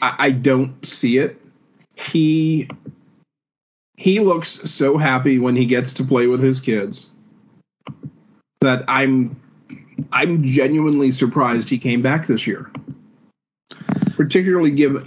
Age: 40-59